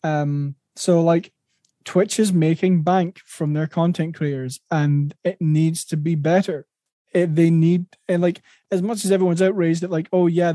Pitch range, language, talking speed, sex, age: 150-180 Hz, English, 170 wpm, male, 20-39